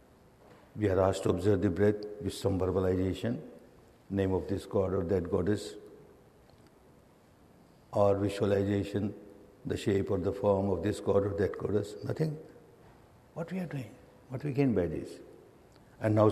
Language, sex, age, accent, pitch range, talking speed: English, male, 60-79, Indian, 100-140 Hz, 155 wpm